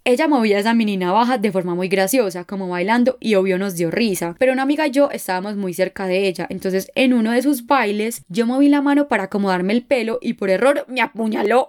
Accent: Colombian